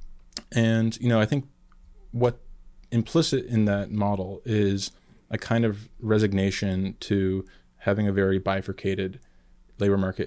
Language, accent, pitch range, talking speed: English, American, 95-110 Hz, 130 wpm